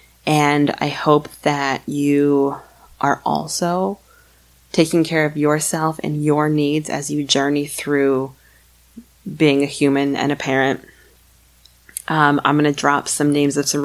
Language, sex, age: English, female, 20-39